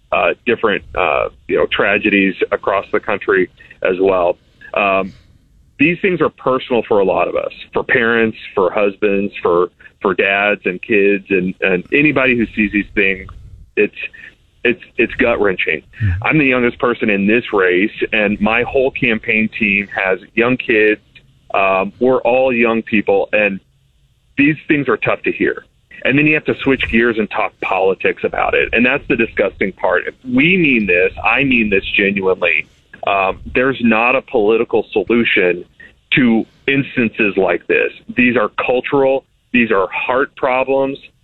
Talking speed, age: 160 wpm, 30-49